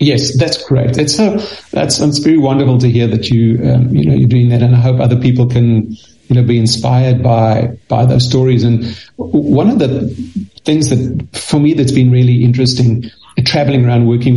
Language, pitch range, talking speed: English, 120-140 Hz, 205 wpm